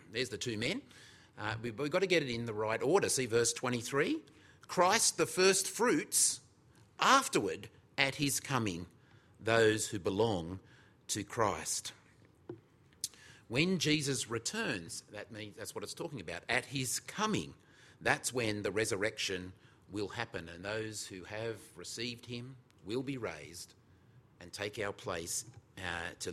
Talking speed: 145 wpm